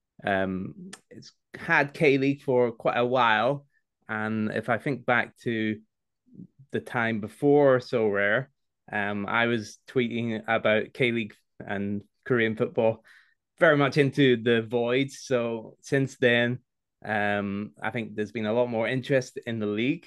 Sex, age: male, 20-39